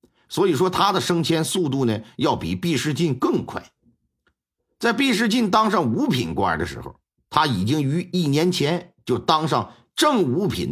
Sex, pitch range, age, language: male, 125-195 Hz, 50-69, Chinese